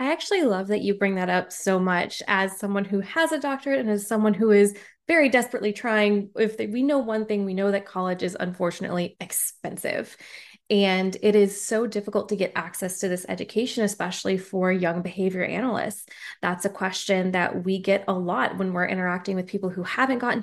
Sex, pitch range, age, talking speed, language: female, 185-215 Hz, 20-39, 200 wpm, English